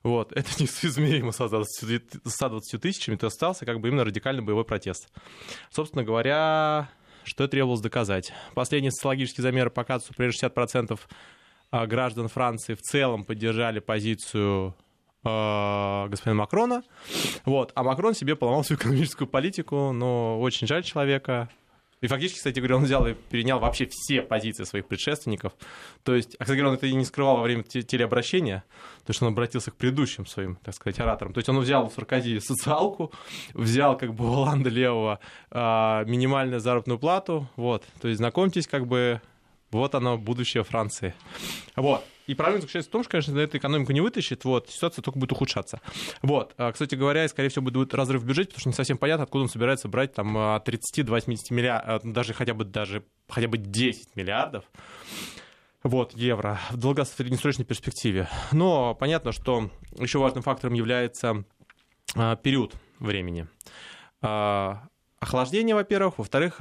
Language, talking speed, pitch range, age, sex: Russian, 150 wpm, 115-140 Hz, 20-39, male